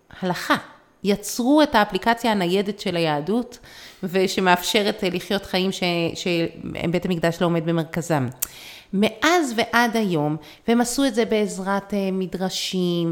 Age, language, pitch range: 30-49, Hebrew, 170-230 Hz